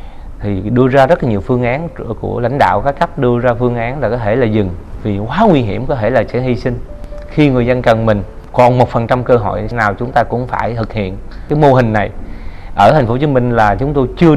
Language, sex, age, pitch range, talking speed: Vietnamese, male, 20-39, 105-130 Hz, 265 wpm